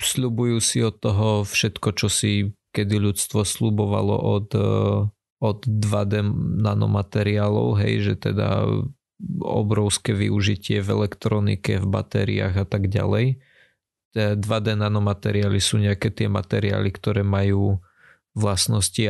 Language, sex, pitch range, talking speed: Slovak, male, 100-115 Hz, 105 wpm